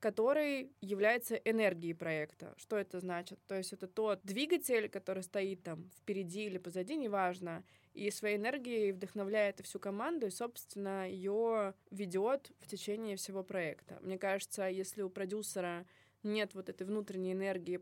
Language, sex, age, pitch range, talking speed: Russian, female, 20-39, 185-215 Hz, 145 wpm